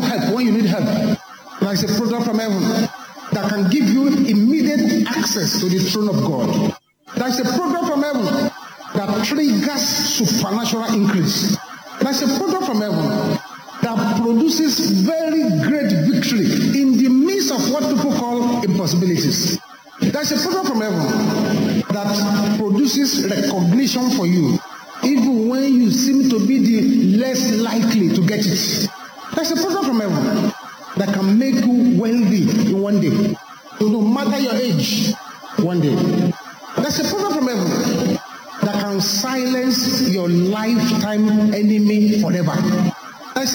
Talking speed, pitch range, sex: 140 wpm, 205-255 Hz, male